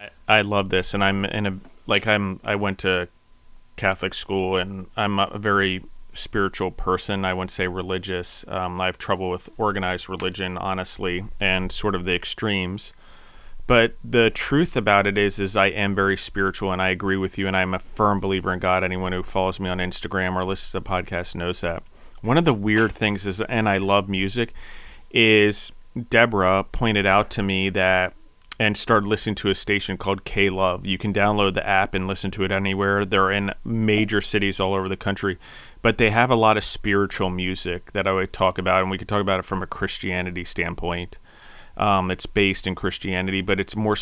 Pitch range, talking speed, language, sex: 95-105 Hz, 200 wpm, English, male